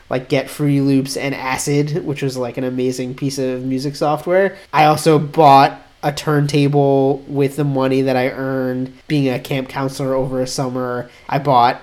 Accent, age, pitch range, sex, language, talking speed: American, 30-49, 140-180 Hz, male, English, 180 wpm